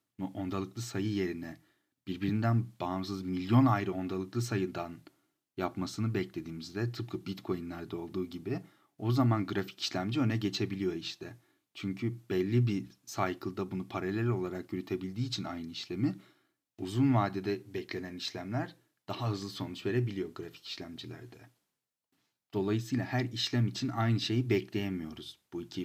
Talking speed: 120 wpm